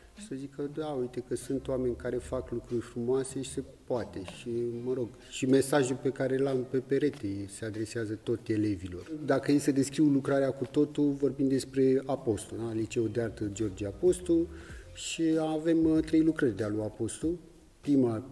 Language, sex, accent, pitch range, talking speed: English, male, Romanian, 110-140 Hz, 175 wpm